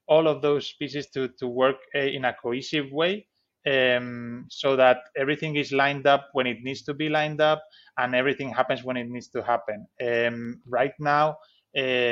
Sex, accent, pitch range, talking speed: male, Spanish, 125-150 Hz, 190 wpm